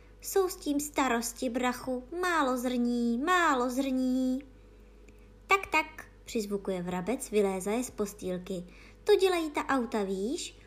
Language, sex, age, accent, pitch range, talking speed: Czech, male, 20-39, native, 205-310 Hz, 125 wpm